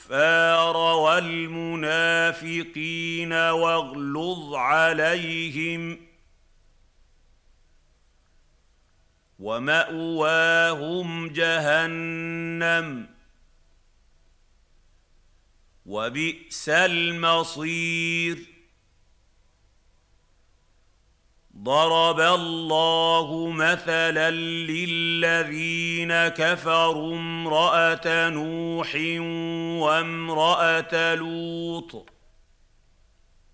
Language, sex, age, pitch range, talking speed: Arabic, male, 50-69, 140-165 Hz, 30 wpm